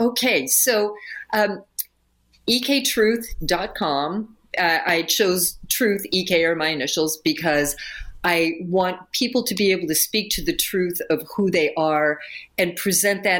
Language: English